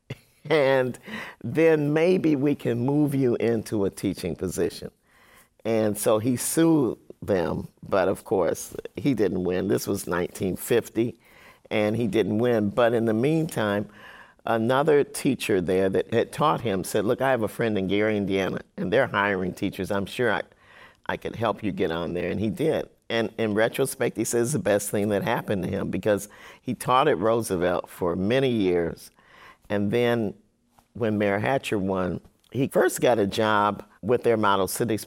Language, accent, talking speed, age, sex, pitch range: English, American, 175 wpm, 50-69, male, 100-115 Hz